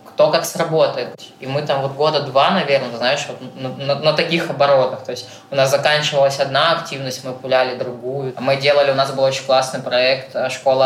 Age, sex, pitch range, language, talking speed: 20-39, female, 125-135 Hz, Russian, 195 wpm